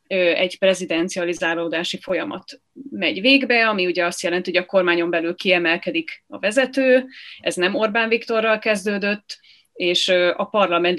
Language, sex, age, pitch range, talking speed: Hungarian, female, 30-49, 180-235 Hz, 130 wpm